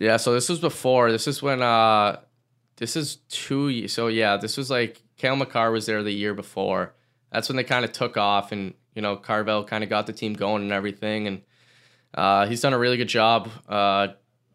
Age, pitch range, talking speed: 10-29, 100-120 Hz, 220 wpm